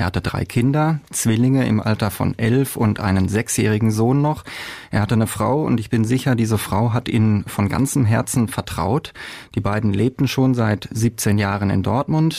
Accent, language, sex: German, German, male